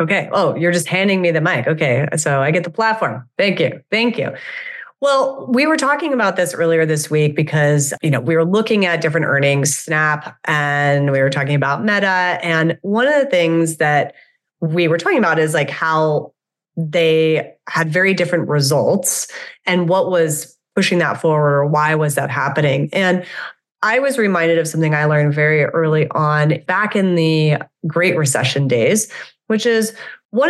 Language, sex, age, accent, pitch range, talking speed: English, female, 30-49, American, 150-190 Hz, 180 wpm